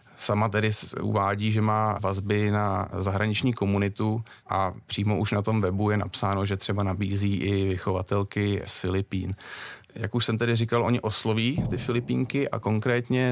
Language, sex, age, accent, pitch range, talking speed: Czech, male, 30-49, native, 100-115 Hz, 160 wpm